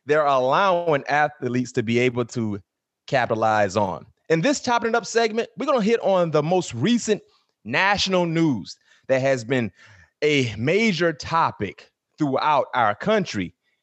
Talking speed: 150 wpm